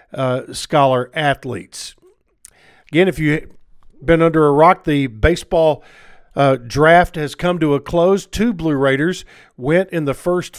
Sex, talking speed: male, 145 wpm